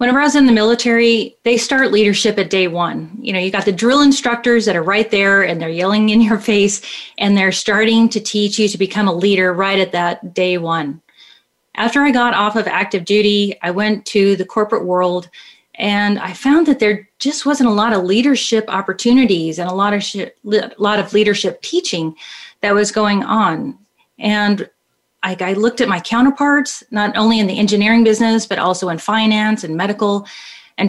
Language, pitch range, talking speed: English, 195-235 Hz, 195 wpm